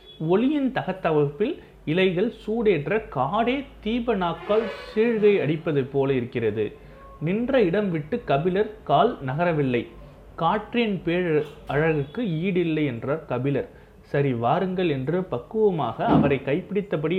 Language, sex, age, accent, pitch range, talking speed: Tamil, male, 30-49, native, 145-205 Hz, 100 wpm